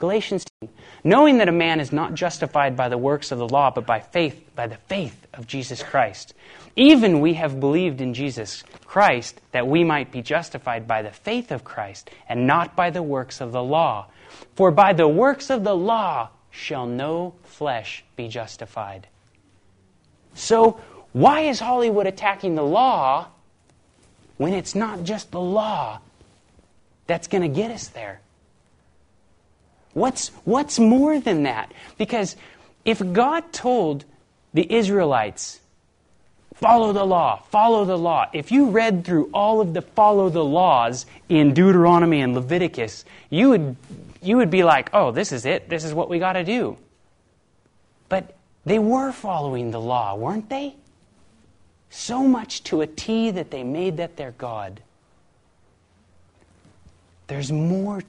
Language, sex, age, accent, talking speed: Danish, male, 30-49, American, 155 wpm